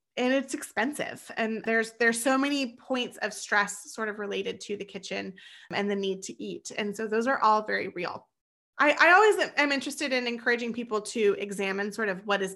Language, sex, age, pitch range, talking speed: English, female, 20-39, 205-260 Hz, 205 wpm